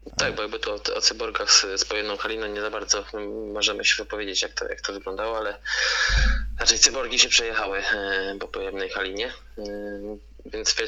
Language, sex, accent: Polish, male, native